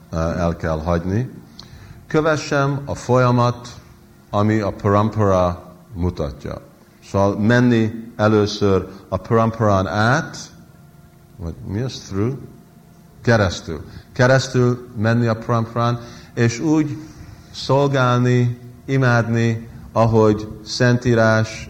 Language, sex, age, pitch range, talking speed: Hungarian, male, 50-69, 90-120 Hz, 85 wpm